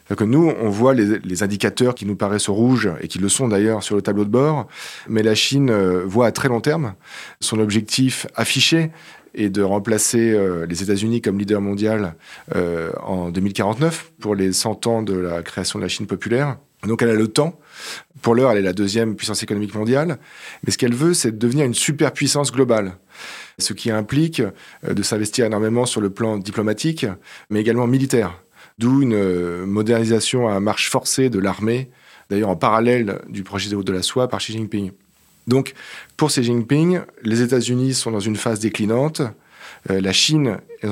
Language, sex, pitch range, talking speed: French, male, 100-130 Hz, 185 wpm